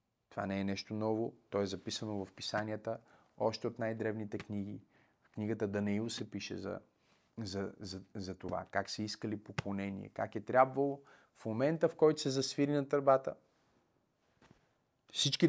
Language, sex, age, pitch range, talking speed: Bulgarian, male, 30-49, 100-125 Hz, 155 wpm